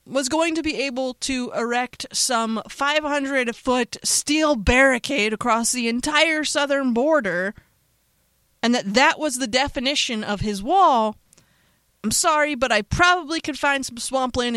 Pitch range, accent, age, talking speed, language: 220-290 Hz, American, 30-49, 140 wpm, English